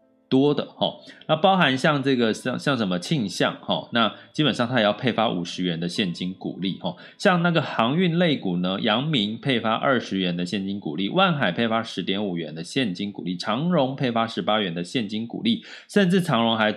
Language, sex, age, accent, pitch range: Chinese, male, 20-39, native, 95-145 Hz